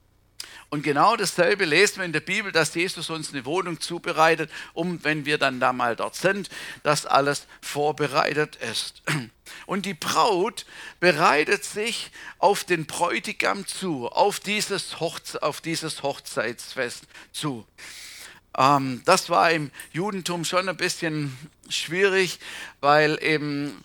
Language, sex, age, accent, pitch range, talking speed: German, male, 50-69, German, 145-180 Hz, 130 wpm